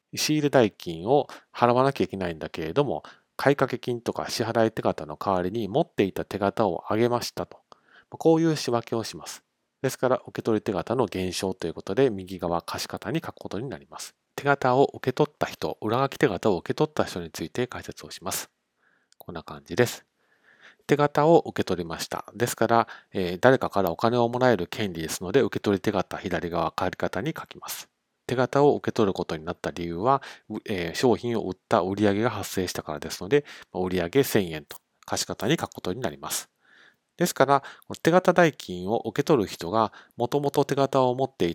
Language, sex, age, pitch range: Japanese, male, 40-59, 90-130 Hz